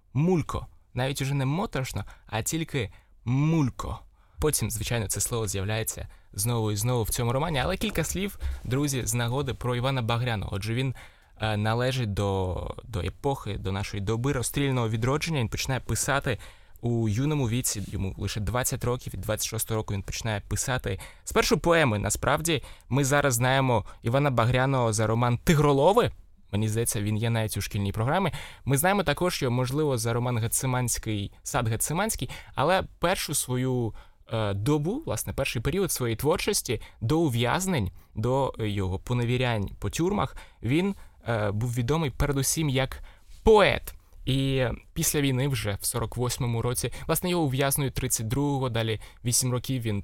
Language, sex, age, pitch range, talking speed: Ukrainian, male, 20-39, 110-140 Hz, 150 wpm